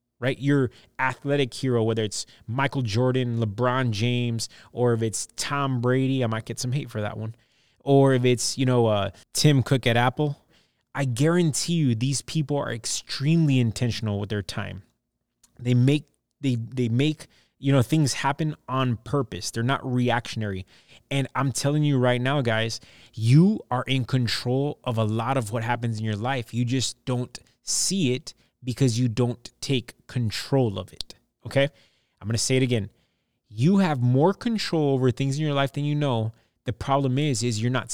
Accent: American